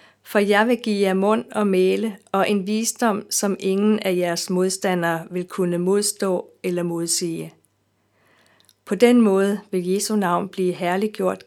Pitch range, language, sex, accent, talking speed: 180-210 Hz, Danish, female, native, 150 wpm